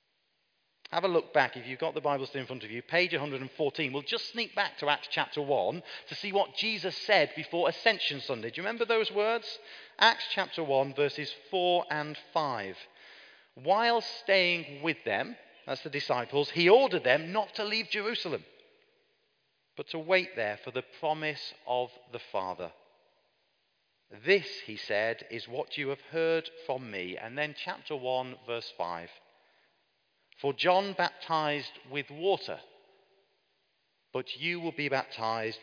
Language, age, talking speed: English, 40-59, 160 wpm